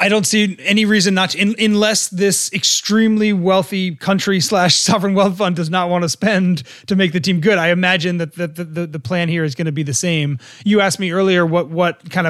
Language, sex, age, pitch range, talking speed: English, male, 30-49, 155-185 Hz, 240 wpm